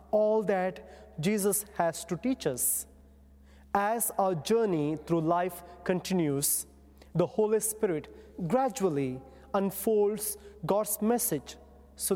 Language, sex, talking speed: English, male, 105 wpm